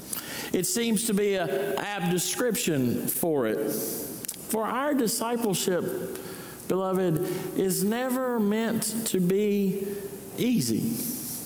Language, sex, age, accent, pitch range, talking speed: English, male, 50-69, American, 190-235 Hz, 100 wpm